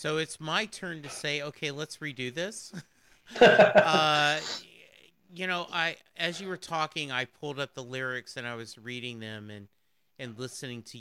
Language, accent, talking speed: English, American, 175 wpm